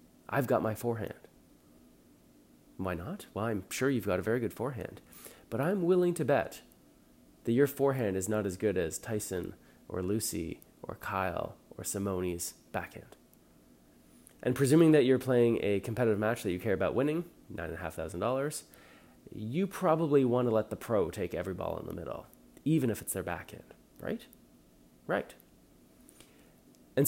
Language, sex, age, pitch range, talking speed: English, male, 30-49, 90-135 Hz, 170 wpm